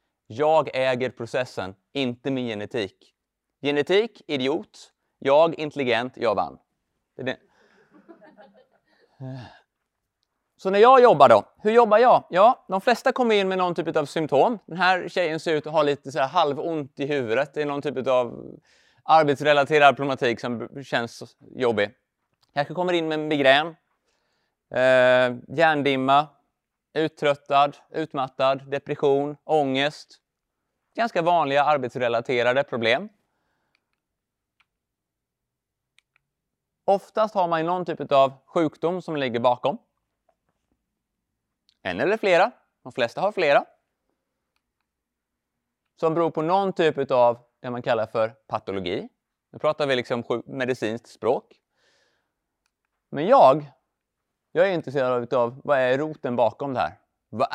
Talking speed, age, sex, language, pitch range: 120 wpm, 30-49, male, Swedish, 125-160 Hz